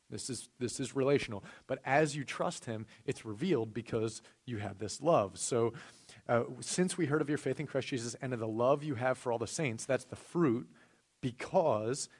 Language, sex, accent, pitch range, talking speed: English, male, American, 110-140 Hz, 205 wpm